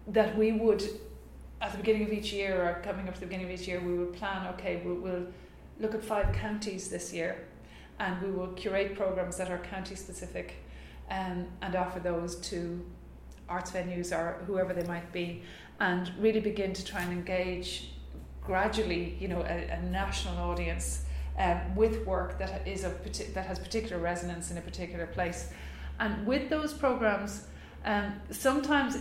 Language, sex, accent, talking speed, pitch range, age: English, female, Irish, 175 wpm, 170-195 Hz, 30-49